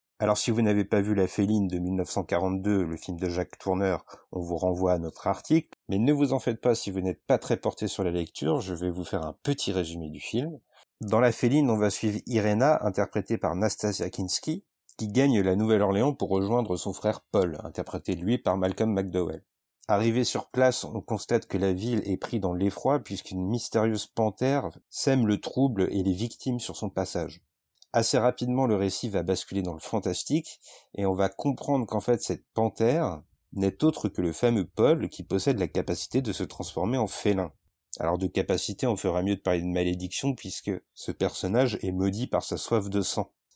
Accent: French